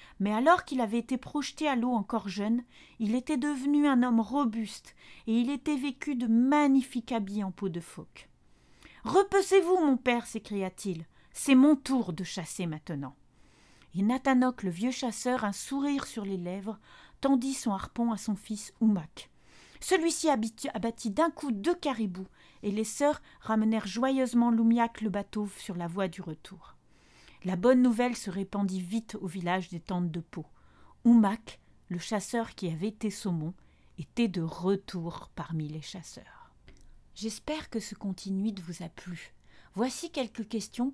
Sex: female